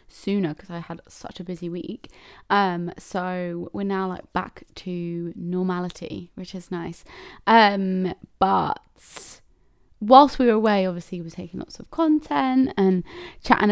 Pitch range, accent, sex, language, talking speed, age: 175-210 Hz, British, female, English, 150 wpm, 20-39